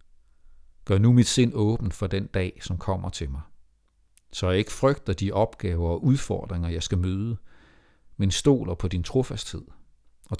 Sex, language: male, Danish